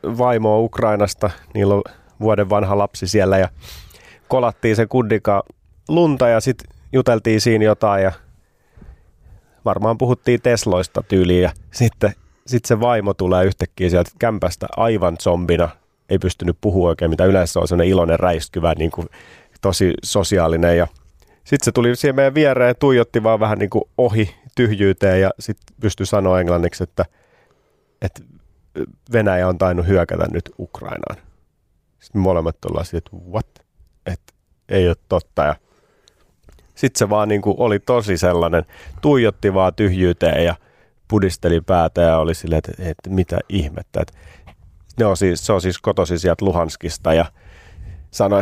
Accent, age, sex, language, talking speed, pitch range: native, 30-49, male, Finnish, 145 wpm, 85-110 Hz